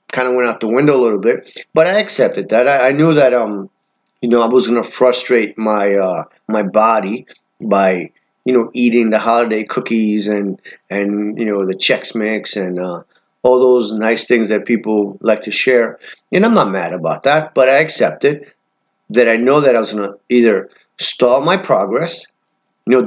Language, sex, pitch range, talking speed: English, male, 110-135 Hz, 190 wpm